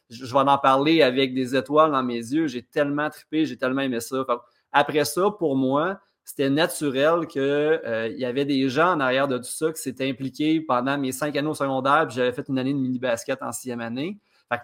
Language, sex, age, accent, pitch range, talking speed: French, male, 30-49, Canadian, 125-150 Hz, 215 wpm